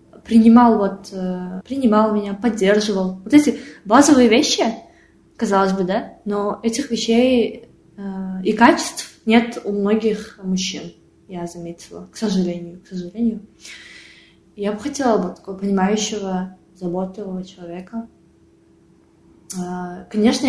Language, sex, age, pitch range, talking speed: Russian, female, 20-39, 185-230 Hz, 105 wpm